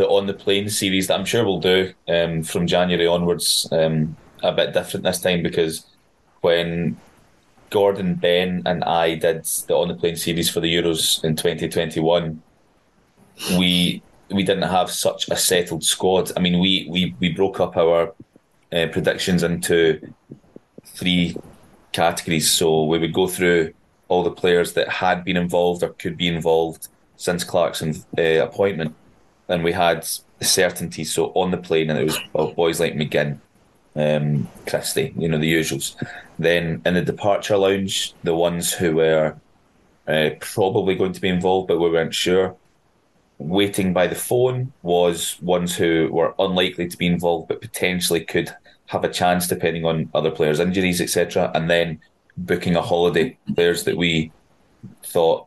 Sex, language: male, English